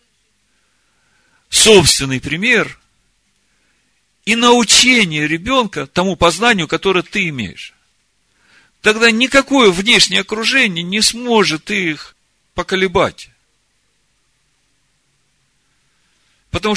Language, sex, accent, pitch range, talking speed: Russian, male, native, 115-185 Hz, 70 wpm